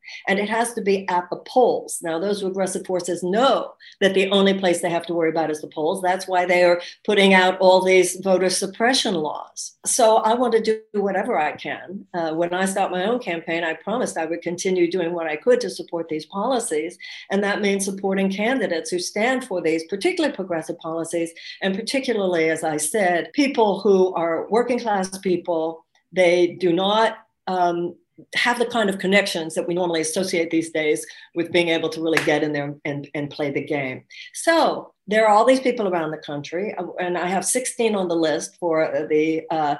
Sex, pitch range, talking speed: female, 175-230 Hz, 200 wpm